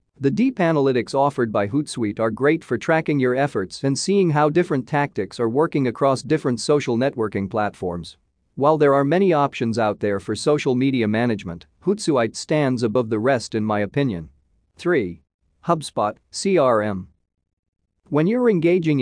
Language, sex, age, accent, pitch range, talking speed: English, male, 40-59, American, 110-150 Hz, 155 wpm